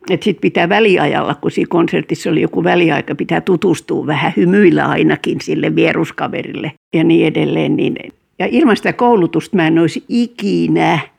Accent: native